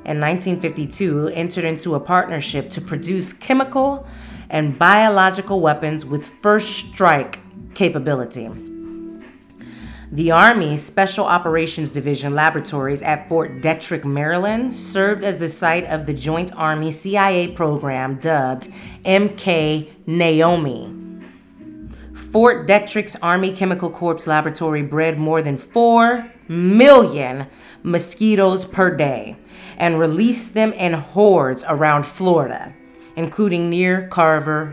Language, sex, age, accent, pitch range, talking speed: English, female, 30-49, American, 150-190 Hz, 110 wpm